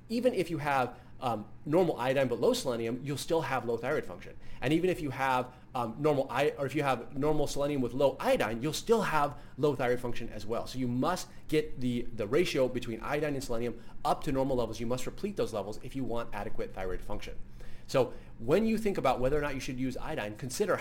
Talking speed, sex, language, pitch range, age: 230 wpm, male, English, 115-145 Hz, 30-49